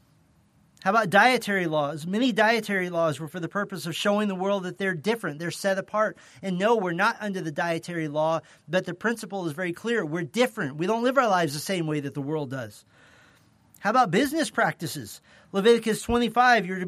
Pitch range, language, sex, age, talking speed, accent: 165-215 Hz, English, male, 40-59, 205 wpm, American